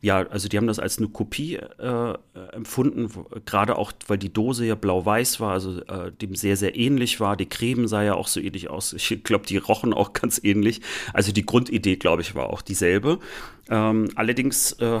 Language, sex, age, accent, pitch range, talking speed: German, male, 30-49, German, 100-125 Hz, 210 wpm